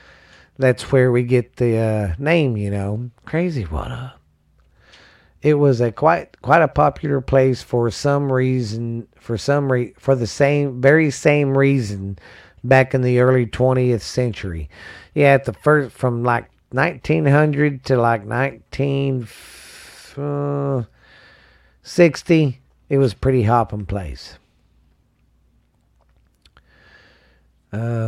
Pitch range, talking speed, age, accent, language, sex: 105-135 Hz, 120 wpm, 40-59, American, English, male